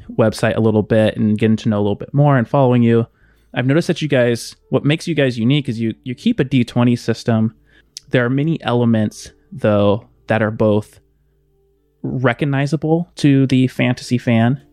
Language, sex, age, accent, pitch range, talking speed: English, male, 20-39, American, 110-130 Hz, 185 wpm